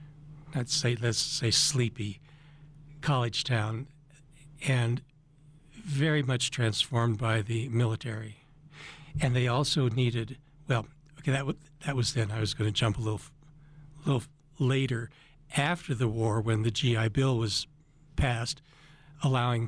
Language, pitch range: English, 120-150 Hz